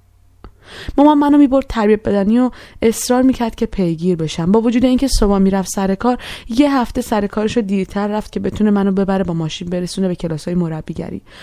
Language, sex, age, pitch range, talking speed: Persian, female, 20-39, 180-240 Hz, 175 wpm